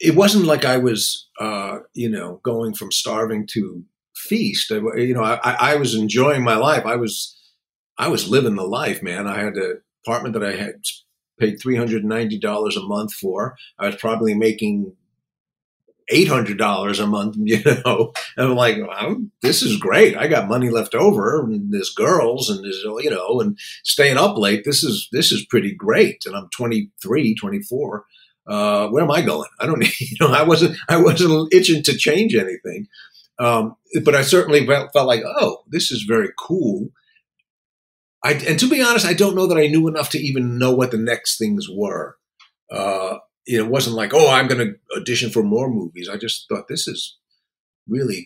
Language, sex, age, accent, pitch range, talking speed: English, male, 50-69, American, 110-180 Hz, 200 wpm